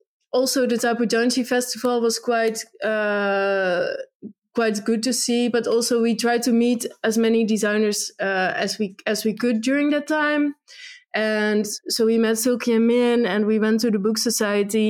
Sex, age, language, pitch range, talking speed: female, 20-39, English, 215-235 Hz, 180 wpm